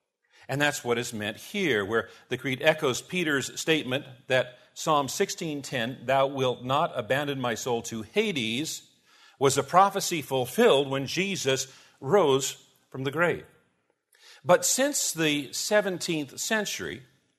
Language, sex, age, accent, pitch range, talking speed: English, male, 50-69, American, 135-180 Hz, 130 wpm